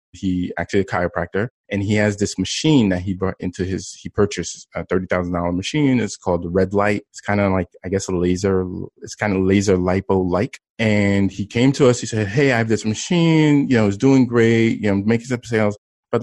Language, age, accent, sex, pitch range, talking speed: English, 20-39, American, male, 95-120 Hz, 225 wpm